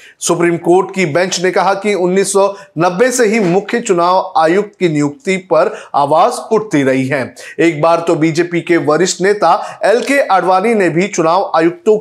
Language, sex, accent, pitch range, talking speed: Hindi, male, native, 170-225 Hz, 165 wpm